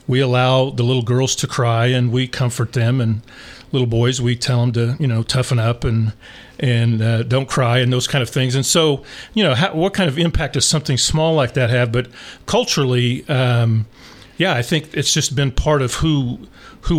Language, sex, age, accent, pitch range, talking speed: English, male, 40-59, American, 115-135 Hz, 210 wpm